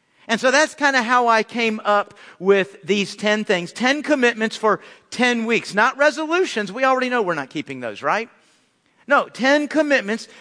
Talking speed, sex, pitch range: 180 wpm, male, 175-260 Hz